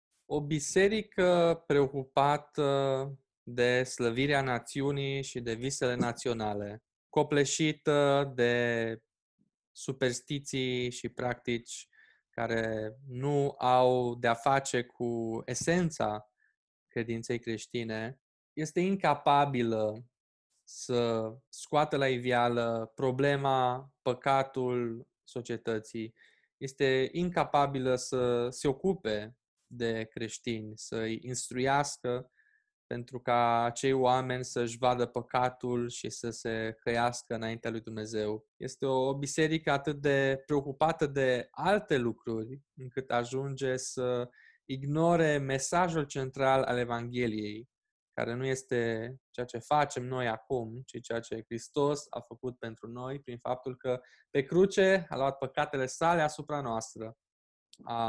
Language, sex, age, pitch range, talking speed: Romanian, male, 20-39, 120-140 Hz, 105 wpm